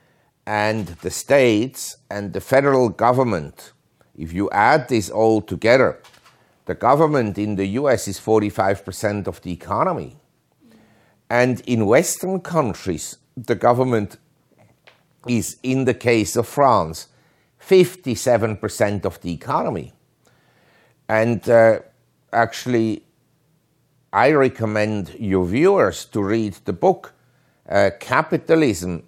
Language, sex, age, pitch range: Korean, male, 50-69, 100-130 Hz